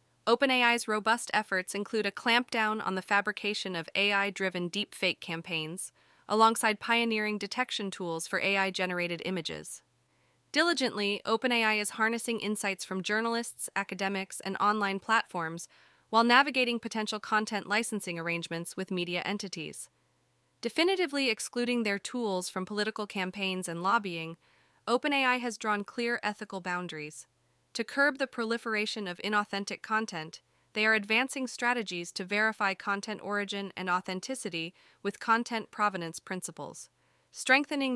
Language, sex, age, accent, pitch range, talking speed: English, female, 20-39, American, 190-230 Hz, 120 wpm